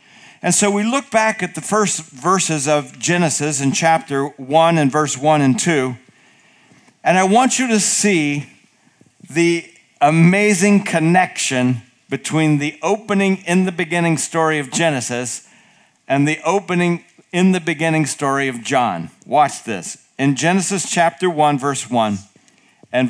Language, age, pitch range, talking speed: English, 50-69, 150-200 Hz, 130 wpm